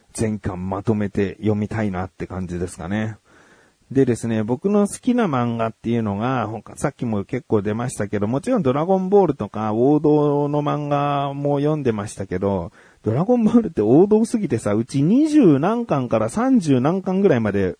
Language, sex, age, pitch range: Japanese, male, 40-59, 100-145 Hz